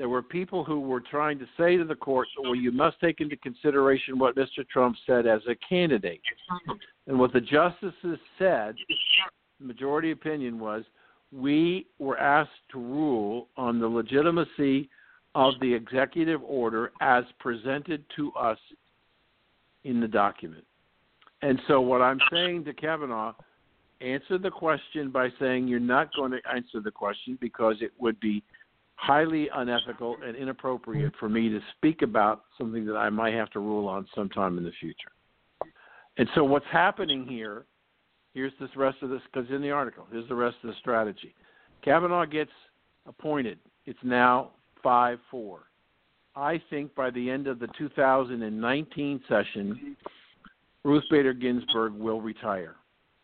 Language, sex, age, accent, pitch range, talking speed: English, male, 60-79, American, 120-150 Hz, 155 wpm